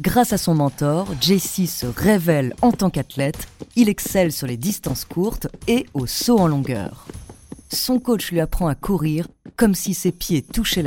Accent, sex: French, female